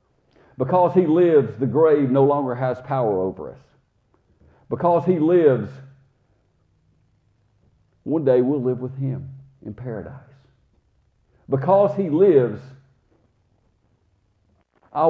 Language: English